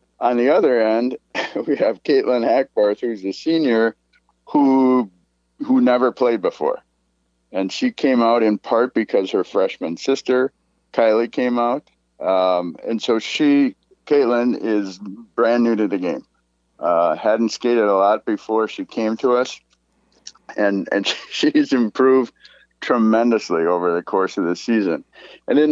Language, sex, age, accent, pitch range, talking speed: English, male, 50-69, American, 90-120 Hz, 145 wpm